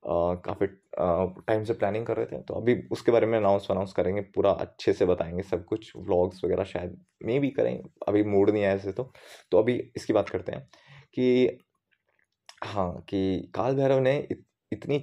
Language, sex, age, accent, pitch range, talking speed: Hindi, male, 20-39, native, 105-140 Hz, 195 wpm